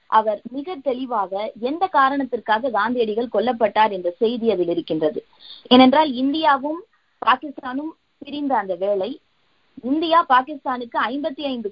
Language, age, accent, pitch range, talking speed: Tamil, 20-39, native, 200-275 Hz, 95 wpm